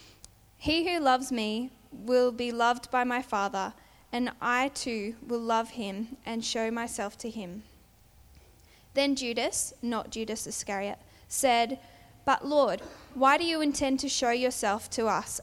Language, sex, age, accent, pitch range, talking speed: English, female, 10-29, Australian, 220-270 Hz, 150 wpm